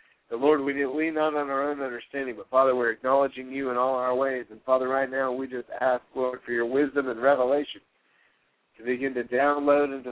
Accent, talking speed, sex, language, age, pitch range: American, 220 wpm, male, English, 60-79, 125-145 Hz